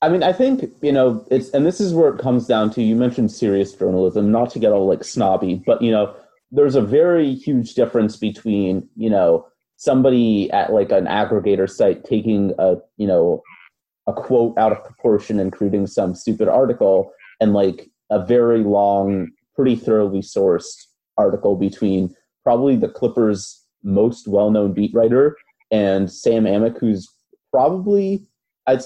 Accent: American